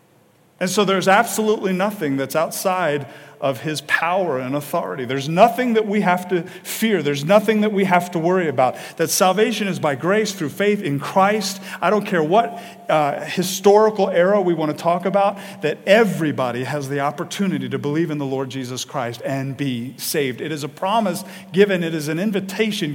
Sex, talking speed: male, 190 wpm